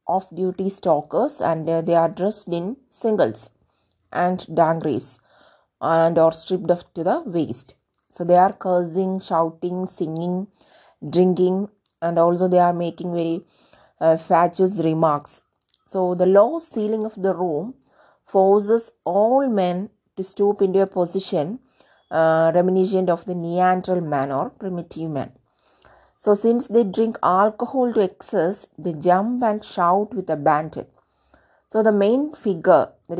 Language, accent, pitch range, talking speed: English, Indian, 170-210 Hz, 140 wpm